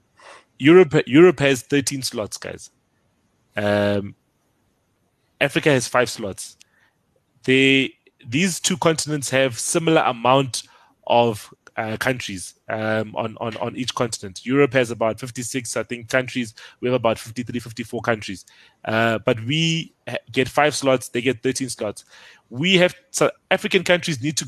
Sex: male